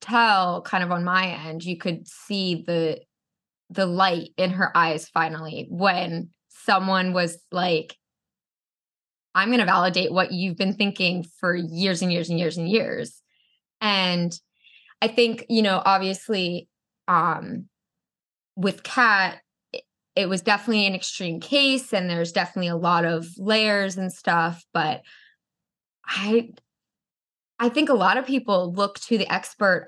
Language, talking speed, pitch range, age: English, 145 wpm, 175-200 Hz, 20-39